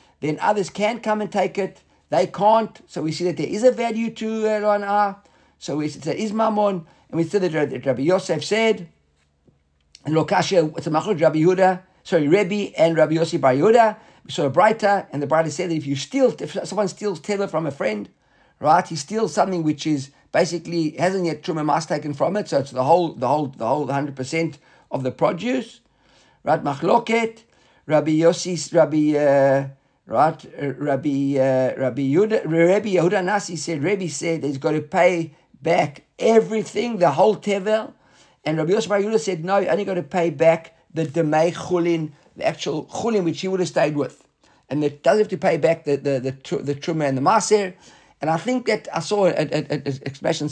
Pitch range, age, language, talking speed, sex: 150-200 Hz, 50-69, English, 195 wpm, male